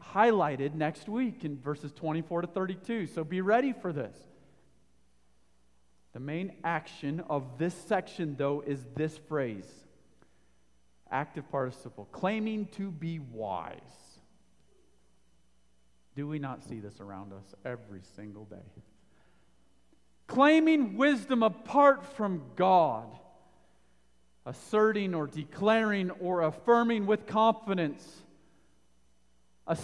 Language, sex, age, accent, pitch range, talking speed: English, male, 40-59, American, 125-175 Hz, 105 wpm